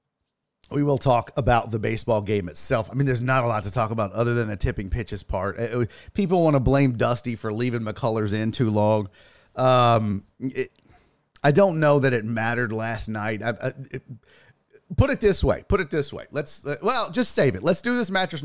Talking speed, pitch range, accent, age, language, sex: 220 wpm, 115-155 Hz, American, 40-59, English, male